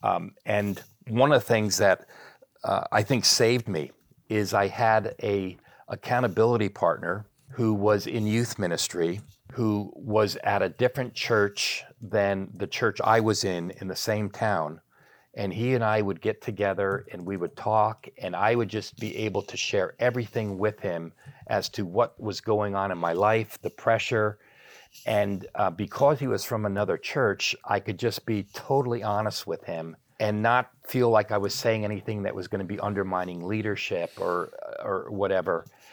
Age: 40-59